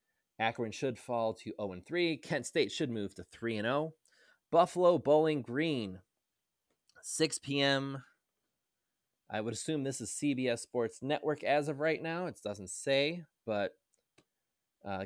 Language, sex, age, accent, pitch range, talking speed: English, male, 20-39, American, 105-150 Hz, 130 wpm